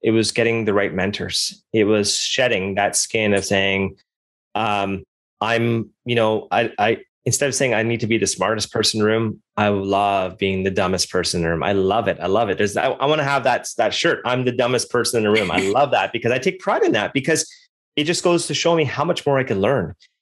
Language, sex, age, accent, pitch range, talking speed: English, male, 30-49, American, 105-135 Hz, 250 wpm